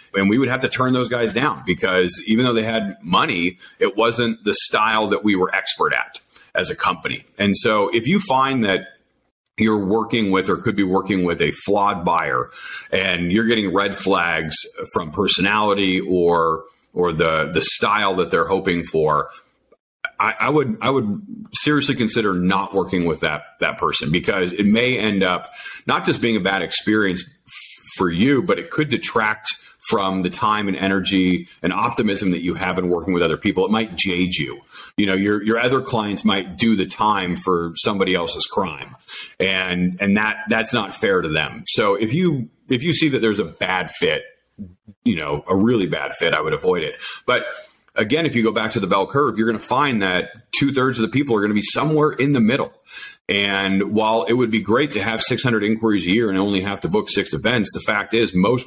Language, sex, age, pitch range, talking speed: English, male, 40-59, 95-115 Hz, 210 wpm